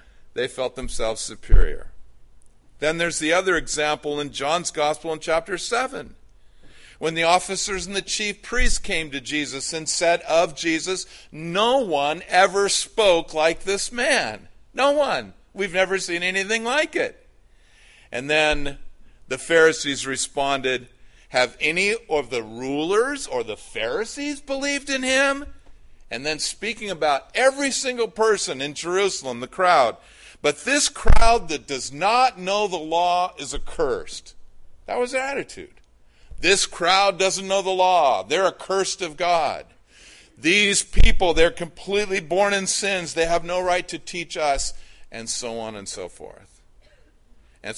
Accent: American